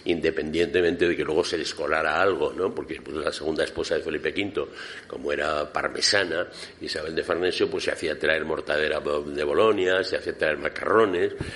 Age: 60-79